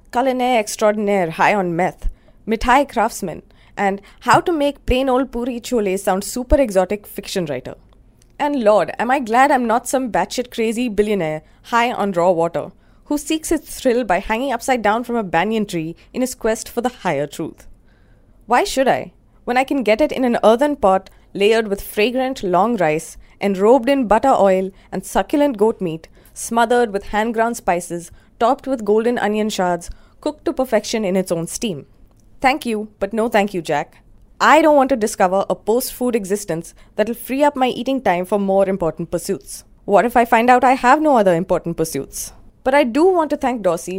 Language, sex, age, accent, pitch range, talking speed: English, female, 20-39, Indian, 185-255 Hz, 190 wpm